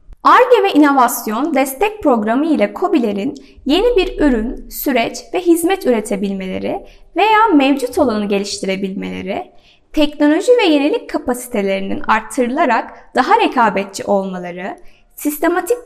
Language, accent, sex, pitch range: Turkish, native, female, 220-330 Hz